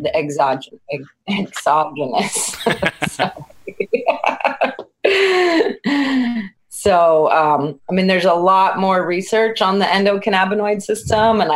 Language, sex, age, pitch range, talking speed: English, female, 30-49, 155-200 Hz, 90 wpm